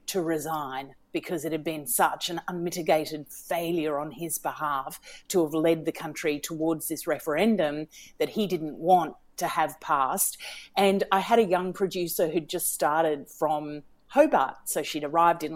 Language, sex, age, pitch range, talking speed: English, female, 40-59, 165-195 Hz, 165 wpm